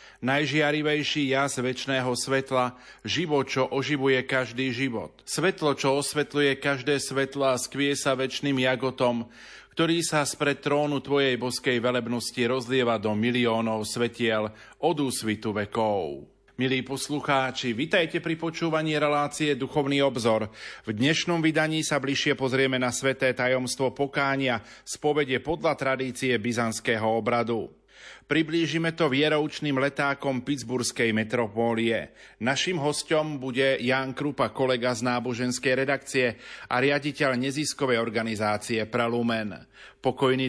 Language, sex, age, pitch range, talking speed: Slovak, male, 40-59, 120-145 Hz, 115 wpm